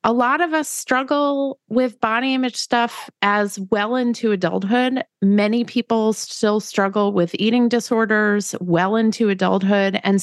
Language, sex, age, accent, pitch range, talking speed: English, female, 30-49, American, 180-250 Hz, 140 wpm